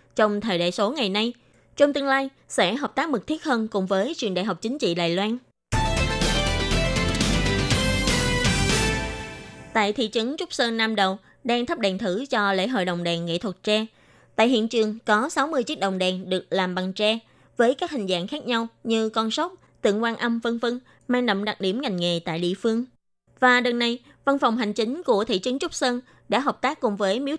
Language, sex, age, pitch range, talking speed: Vietnamese, female, 20-39, 200-255 Hz, 210 wpm